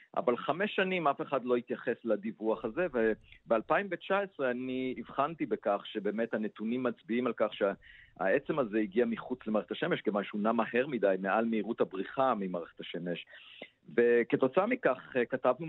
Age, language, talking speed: 50-69, Hebrew, 140 wpm